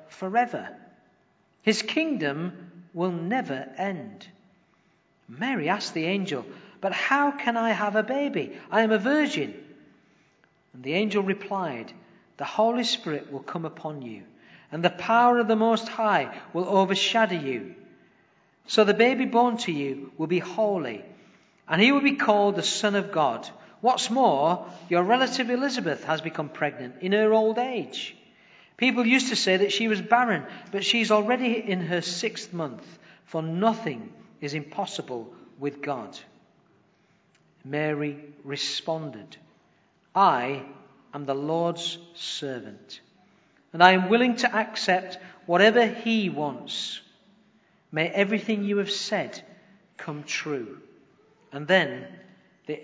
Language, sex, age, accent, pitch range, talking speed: English, male, 50-69, British, 160-225 Hz, 135 wpm